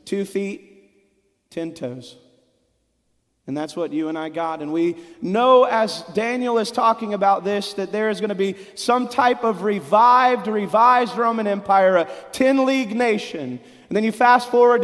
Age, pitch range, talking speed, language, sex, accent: 30-49, 215-260 Hz, 170 wpm, English, male, American